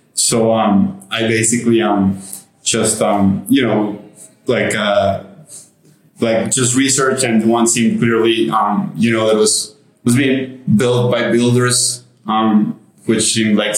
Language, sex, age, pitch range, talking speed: English, male, 20-39, 110-125 Hz, 140 wpm